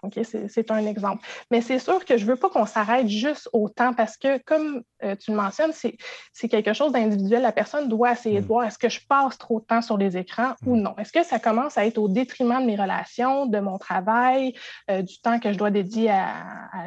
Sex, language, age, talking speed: female, French, 20-39, 255 wpm